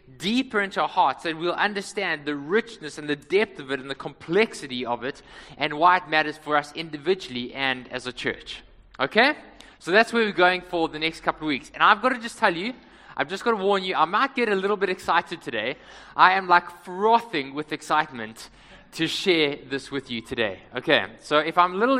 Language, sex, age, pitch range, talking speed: English, male, 20-39, 155-215 Hz, 220 wpm